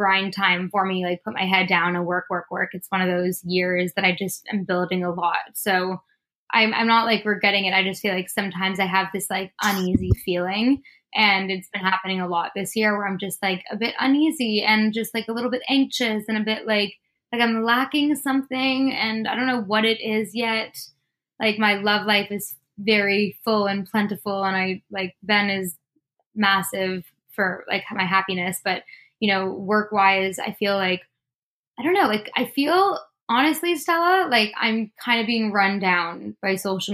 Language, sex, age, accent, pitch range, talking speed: English, female, 10-29, American, 190-220 Hz, 200 wpm